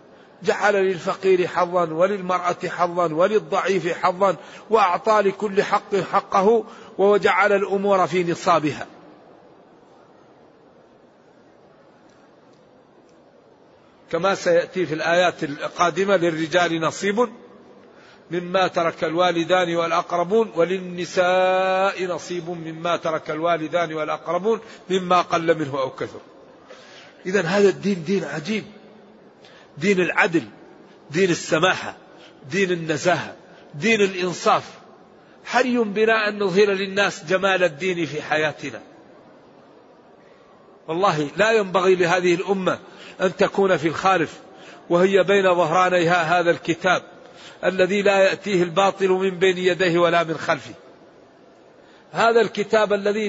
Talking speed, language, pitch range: 95 wpm, Arabic, 175-200 Hz